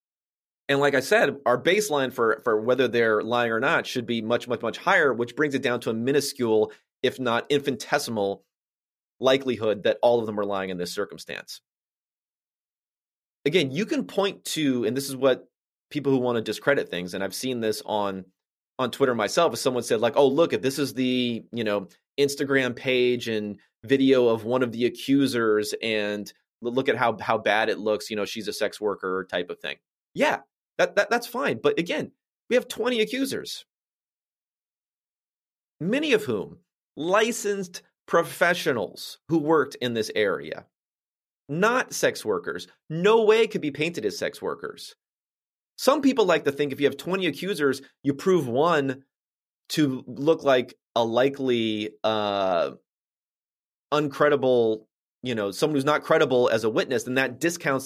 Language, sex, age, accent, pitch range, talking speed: English, male, 30-49, American, 115-155 Hz, 170 wpm